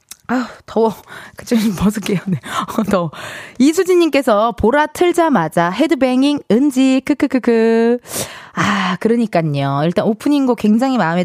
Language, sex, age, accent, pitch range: Korean, female, 20-39, native, 195-295 Hz